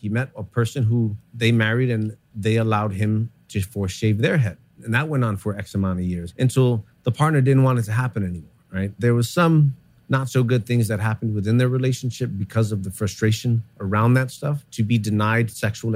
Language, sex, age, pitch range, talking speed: English, male, 30-49, 105-130 Hz, 220 wpm